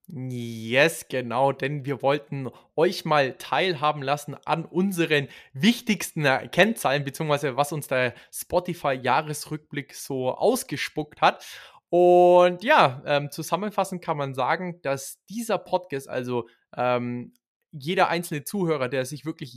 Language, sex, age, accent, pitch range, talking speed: German, male, 20-39, German, 130-165 Hz, 120 wpm